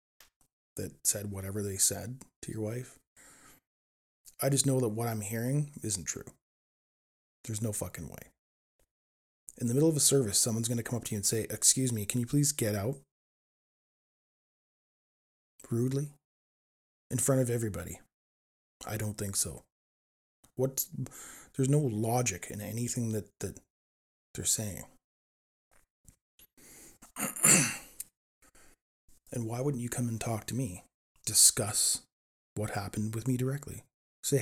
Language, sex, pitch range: English, male, 95-125 Hz